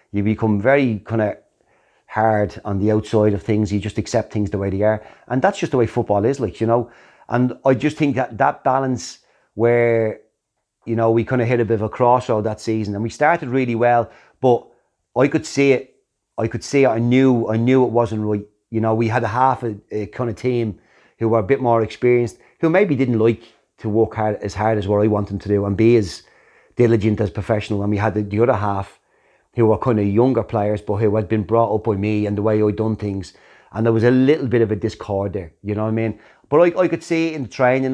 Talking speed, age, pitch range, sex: 255 wpm, 30-49, 105-125 Hz, male